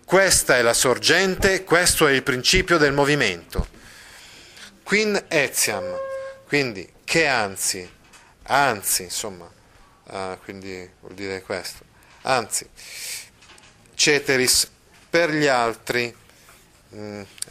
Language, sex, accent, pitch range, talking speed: Italian, male, native, 110-155 Hz, 95 wpm